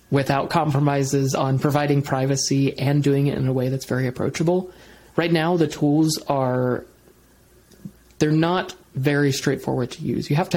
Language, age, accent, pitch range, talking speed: English, 30-49, American, 130-145 Hz, 165 wpm